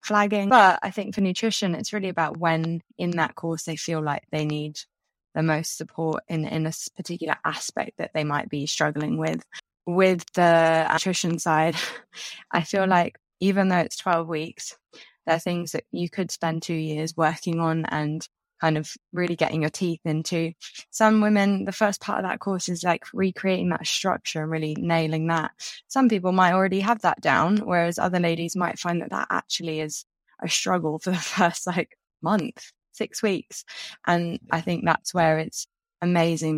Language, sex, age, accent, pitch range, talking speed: English, female, 20-39, British, 160-190 Hz, 185 wpm